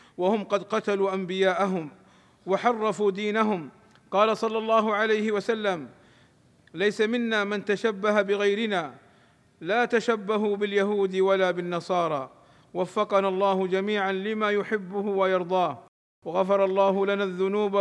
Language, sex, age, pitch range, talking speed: Arabic, male, 50-69, 180-210 Hz, 105 wpm